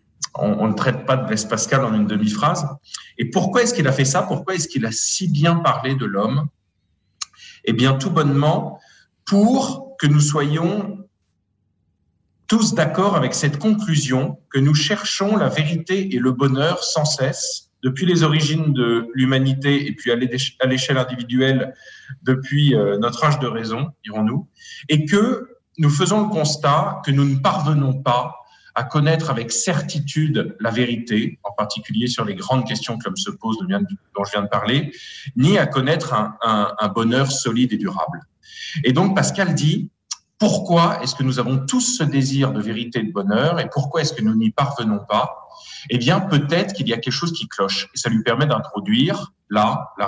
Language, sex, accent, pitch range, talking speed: French, male, French, 120-170 Hz, 180 wpm